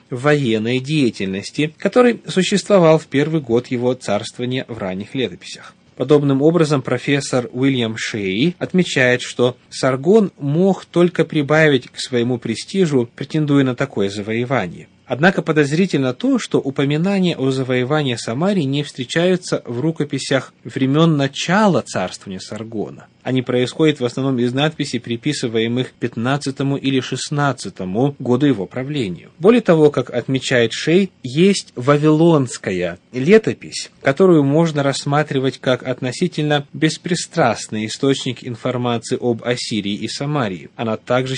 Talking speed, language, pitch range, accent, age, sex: 115 wpm, Russian, 125-155 Hz, native, 30-49, male